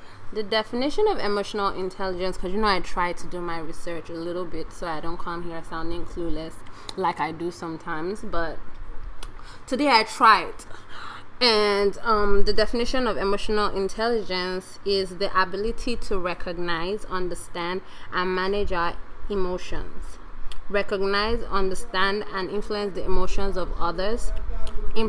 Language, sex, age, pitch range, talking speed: English, female, 20-39, 180-210 Hz, 140 wpm